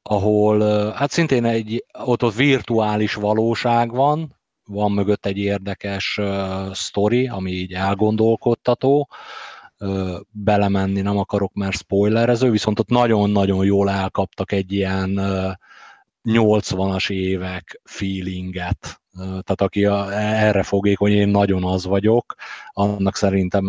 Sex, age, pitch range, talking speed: male, 30-49, 95-110 Hz, 120 wpm